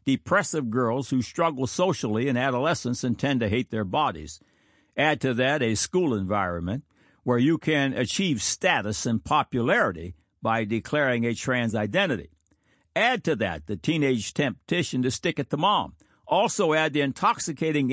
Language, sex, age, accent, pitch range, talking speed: English, male, 60-79, American, 115-150 Hz, 155 wpm